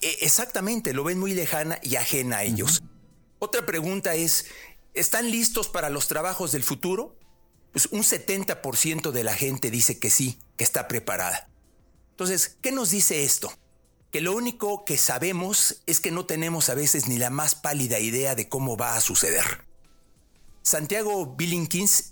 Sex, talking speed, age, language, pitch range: male, 160 wpm, 40-59, Spanish, 130-185 Hz